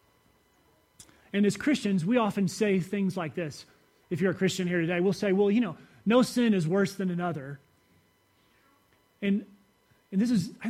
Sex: male